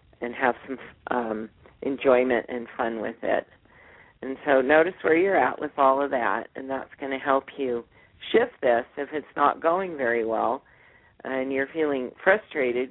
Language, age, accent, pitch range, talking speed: English, 40-59, American, 120-150 Hz, 170 wpm